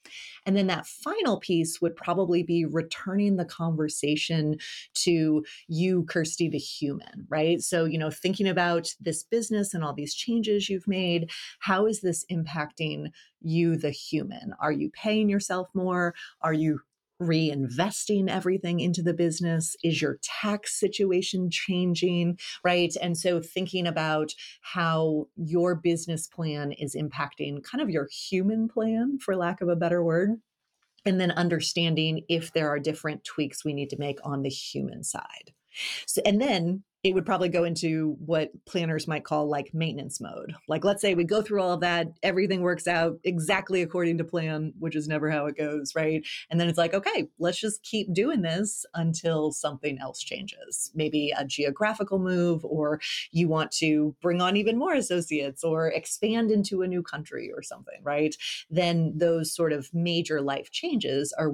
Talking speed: 170 wpm